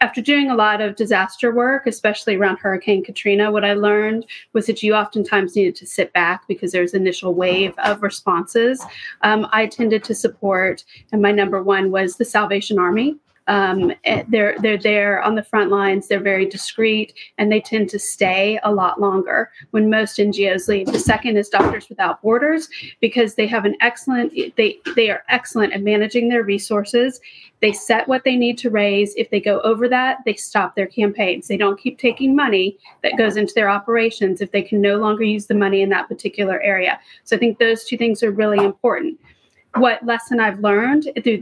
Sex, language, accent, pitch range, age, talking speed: female, English, American, 200-235 Hz, 30-49, 195 wpm